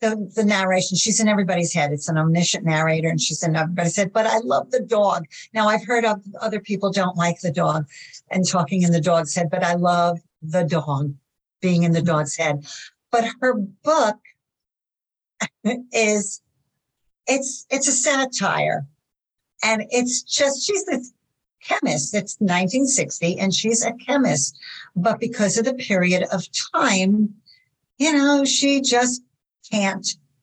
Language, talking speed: English, 155 wpm